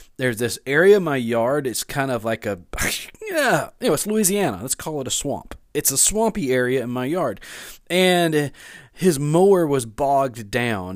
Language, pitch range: English, 120-170 Hz